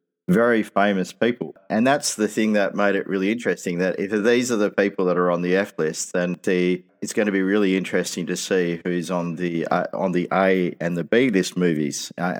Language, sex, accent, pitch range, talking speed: English, male, Australian, 90-110 Hz, 225 wpm